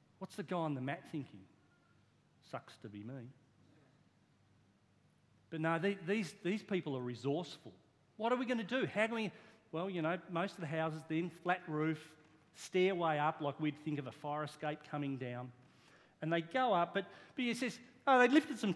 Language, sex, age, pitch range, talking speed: English, male, 40-59, 145-225 Hz, 195 wpm